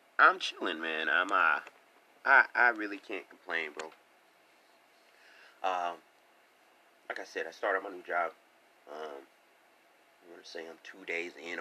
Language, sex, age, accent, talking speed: English, male, 30-49, American, 150 wpm